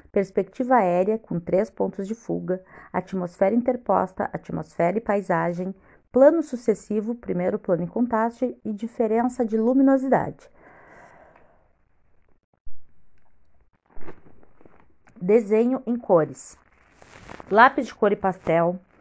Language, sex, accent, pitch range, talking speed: Portuguese, female, Brazilian, 185-235 Hz, 95 wpm